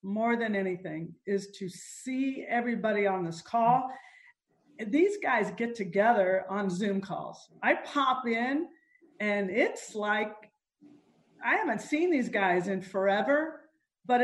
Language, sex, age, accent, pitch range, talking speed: English, female, 40-59, American, 200-260 Hz, 130 wpm